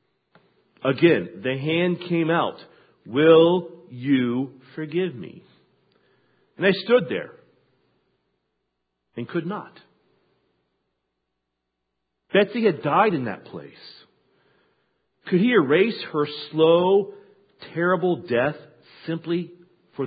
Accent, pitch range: American, 140-200 Hz